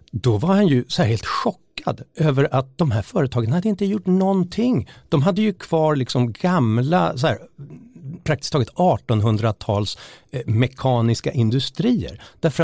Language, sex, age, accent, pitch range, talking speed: Swedish, male, 60-79, native, 105-140 Hz, 145 wpm